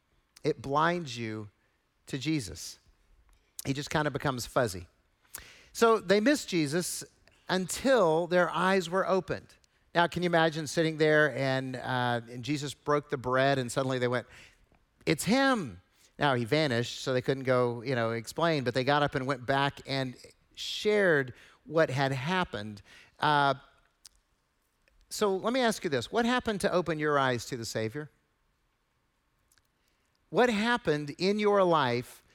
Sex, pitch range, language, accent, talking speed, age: male, 125-175 Hz, English, American, 150 wpm, 50-69